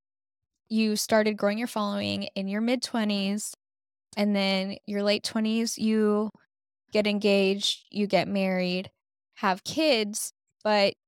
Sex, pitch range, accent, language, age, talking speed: female, 190-230 Hz, American, English, 10-29, 120 wpm